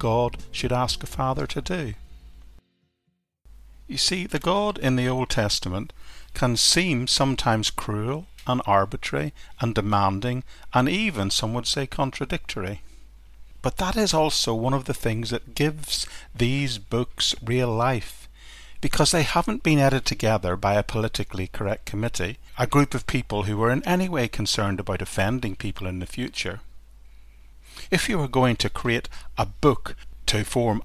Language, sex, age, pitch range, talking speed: English, male, 50-69, 100-135 Hz, 155 wpm